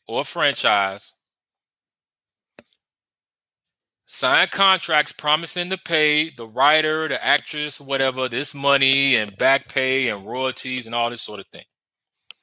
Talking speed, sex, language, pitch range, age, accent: 120 wpm, male, English, 125-160 Hz, 30-49, American